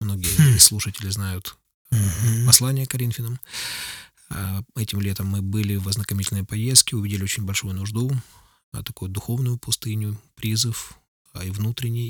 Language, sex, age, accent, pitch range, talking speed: Ukrainian, male, 20-39, native, 100-120 Hz, 115 wpm